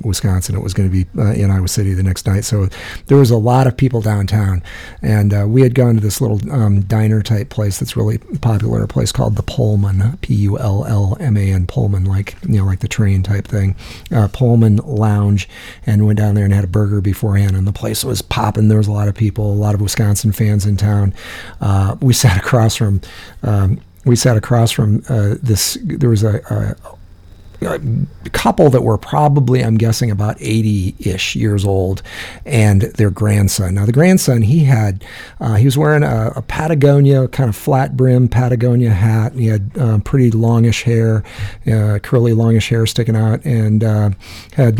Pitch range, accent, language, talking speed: 105-125 Hz, American, English, 195 wpm